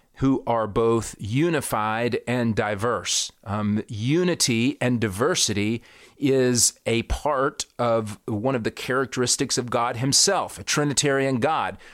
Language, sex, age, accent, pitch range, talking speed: English, male, 40-59, American, 115-145 Hz, 120 wpm